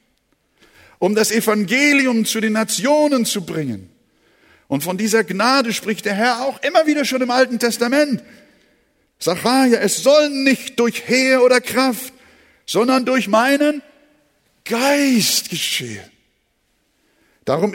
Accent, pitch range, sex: German, 185-250 Hz, male